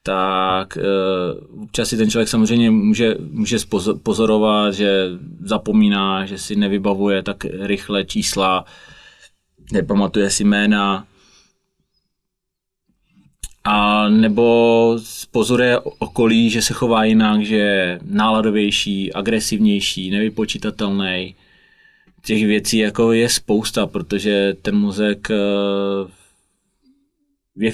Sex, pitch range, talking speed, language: male, 100-115 Hz, 95 wpm, Czech